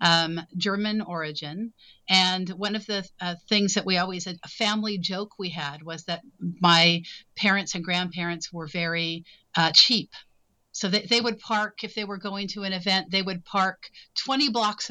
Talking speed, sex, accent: 180 wpm, female, American